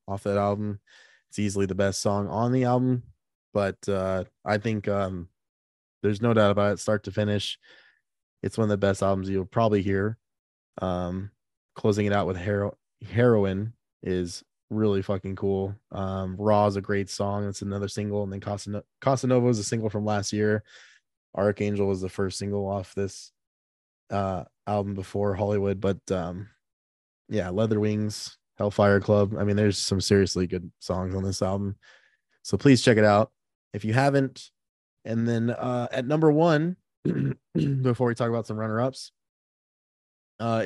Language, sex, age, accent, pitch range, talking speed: English, male, 20-39, American, 100-110 Hz, 165 wpm